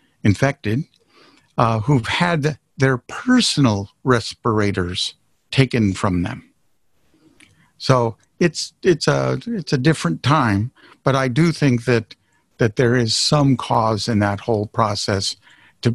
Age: 50-69